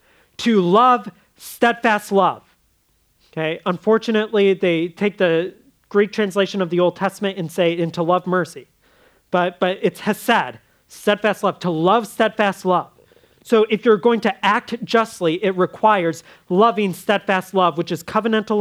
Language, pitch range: English, 155-195 Hz